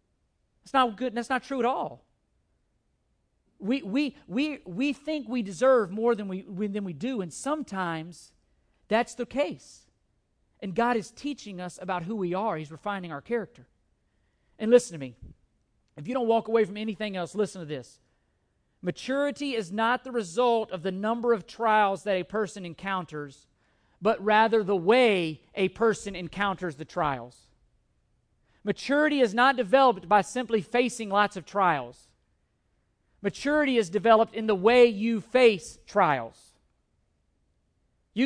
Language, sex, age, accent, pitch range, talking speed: English, male, 50-69, American, 180-240 Hz, 155 wpm